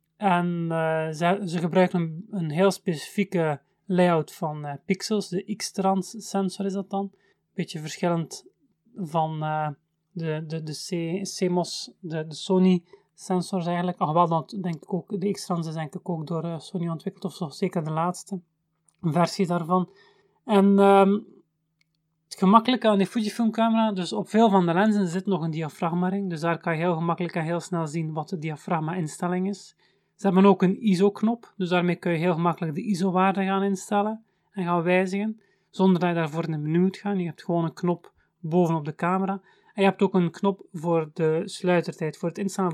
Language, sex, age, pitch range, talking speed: Dutch, male, 30-49, 165-195 Hz, 190 wpm